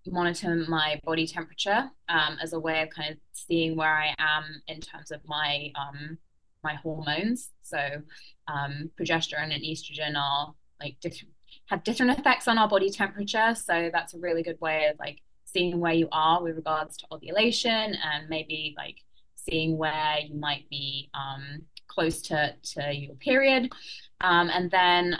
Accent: British